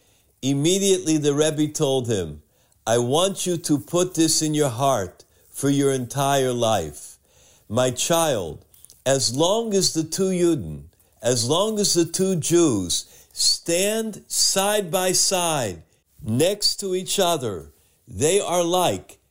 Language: English